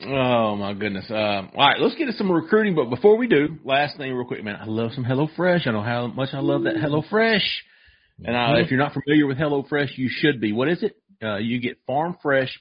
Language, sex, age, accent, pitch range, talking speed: English, male, 40-59, American, 110-145 Hz, 255 wpm